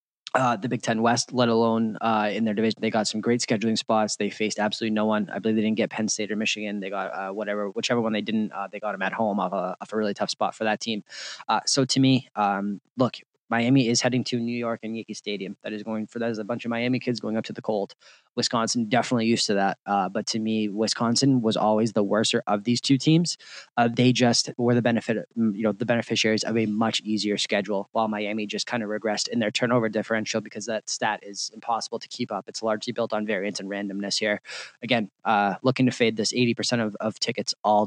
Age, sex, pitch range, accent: 20-39, male, 105-125 Hz, American